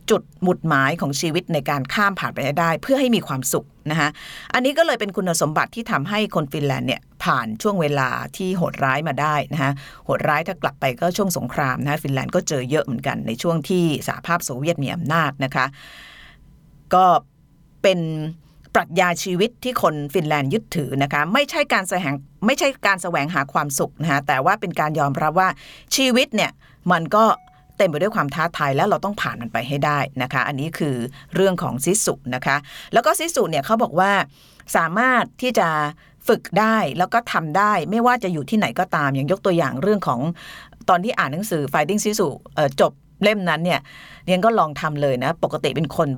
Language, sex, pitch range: Thai, female, 145-190 Hz